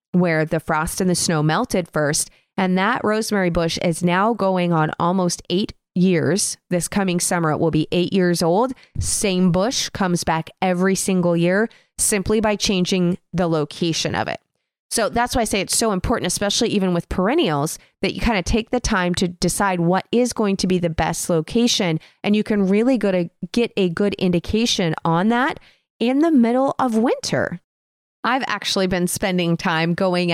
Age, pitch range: 30-49, 170-215 Hz